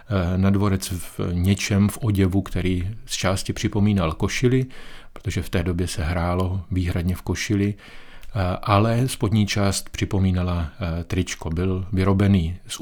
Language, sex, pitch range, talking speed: Czech, male, 90-100 Hz, 130 wpm